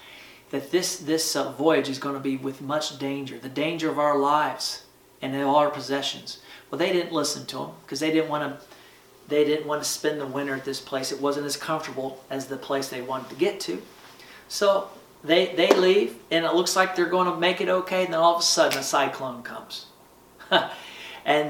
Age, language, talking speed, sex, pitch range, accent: 40-59, English, 220 wpm, male, 145-185 Hz, American